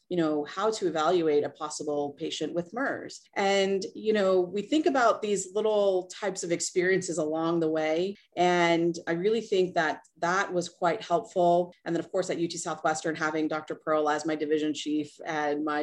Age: 30-49